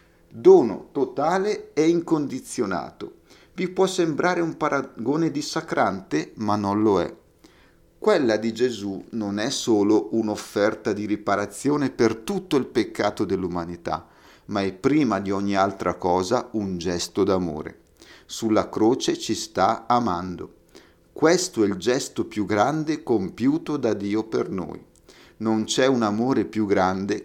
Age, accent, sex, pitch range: 50-69, native, male, 95-140 Hz